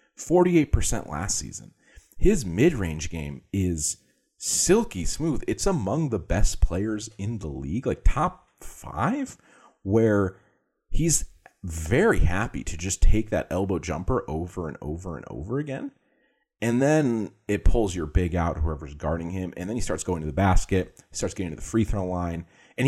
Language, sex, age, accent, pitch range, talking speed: English, male, 30-49, American, 80-105 Hz, 160 wpm